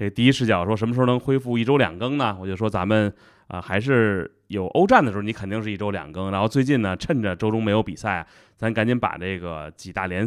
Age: 20-39